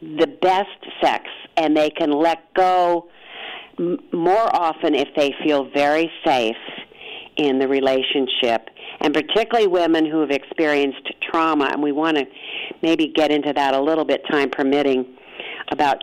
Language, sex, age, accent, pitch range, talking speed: English, female, 50-69, American, 145-230 Hz, 150 wpm